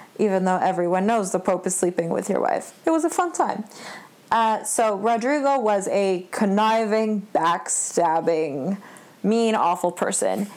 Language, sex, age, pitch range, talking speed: English, female, 20-39, 195-235 Hz, 150 wpm